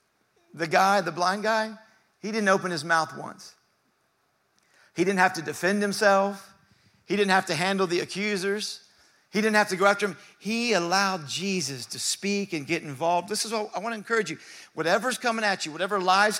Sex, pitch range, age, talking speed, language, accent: male, 190-230 Hz, 50-69, 195 wpm, English, American